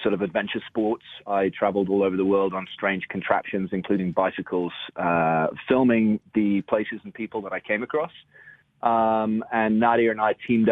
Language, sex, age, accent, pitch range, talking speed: English, male, 30-49, British, 95-110 Hz, 175 wpm